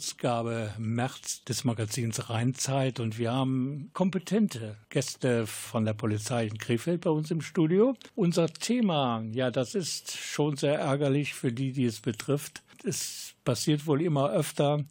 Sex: male